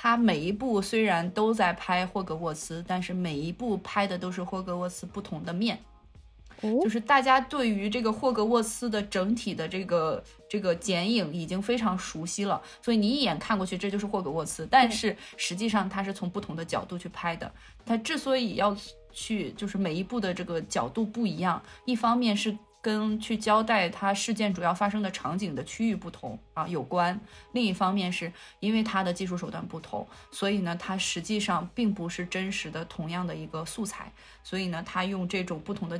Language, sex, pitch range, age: Chinese, female, 180-225 Hz, 20-39